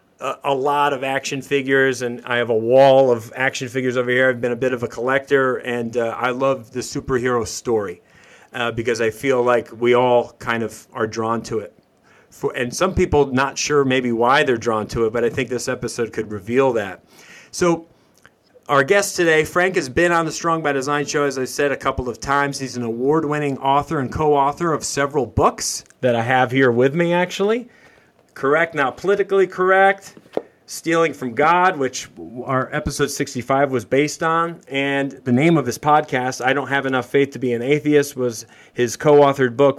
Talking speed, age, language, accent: 200 wpm, 40-59, English, American